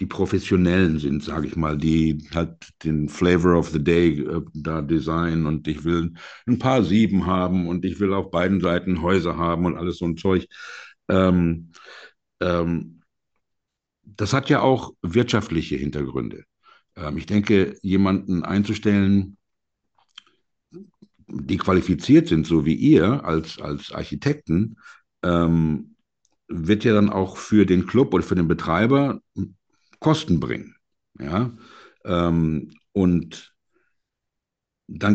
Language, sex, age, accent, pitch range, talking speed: German, male, 60-79, German, 85-105 Hz, 130 wpm